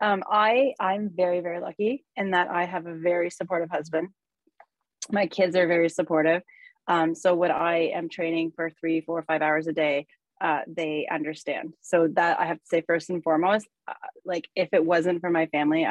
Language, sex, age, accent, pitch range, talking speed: English, female, 30-49, American, 155-175 Hz, 200 wpm